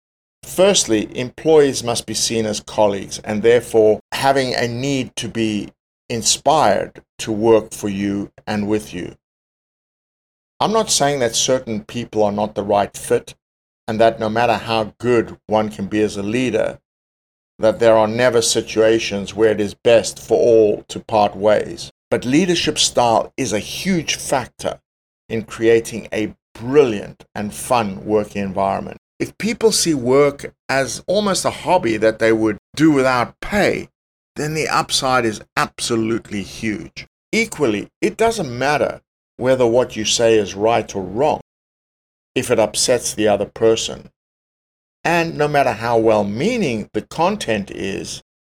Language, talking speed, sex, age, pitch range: English, 150 wpm, male, 50-69, 105-125 Hz